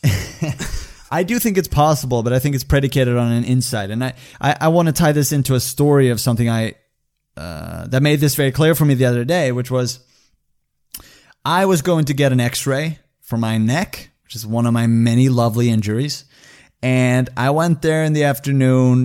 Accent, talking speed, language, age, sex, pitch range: American, 205 wpm, English, 30-49, male, 115-140 Hz